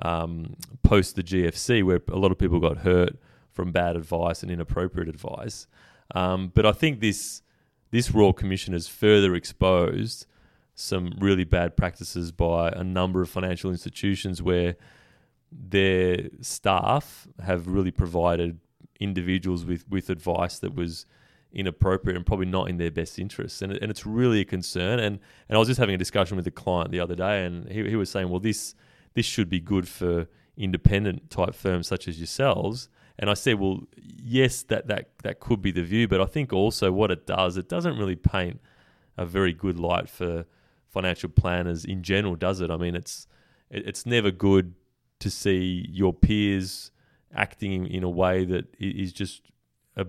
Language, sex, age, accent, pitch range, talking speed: English, male, 20-39, Australian, 90-100 Hz, 175 wpm